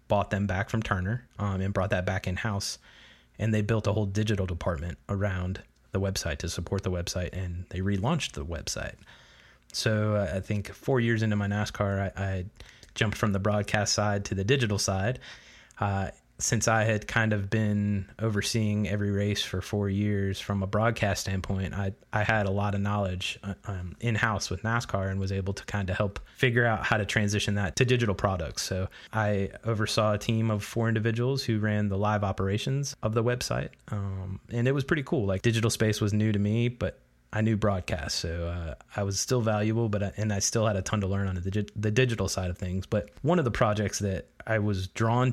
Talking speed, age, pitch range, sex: 210 wpm, 20-39, 95-110 Hz, male